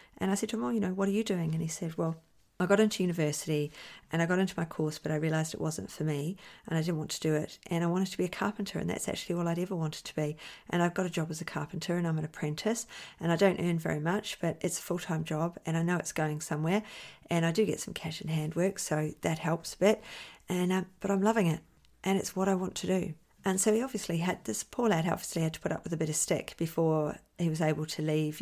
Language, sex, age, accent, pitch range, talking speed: English, female, 40-59, Australian, 160-190 Hz, 285 wpm